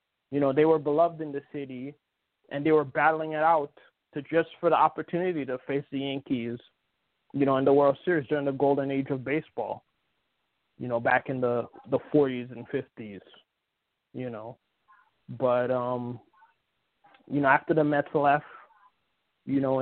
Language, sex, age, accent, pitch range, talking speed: English, male, 20-39, American, 135-155 Hz, 165 wpm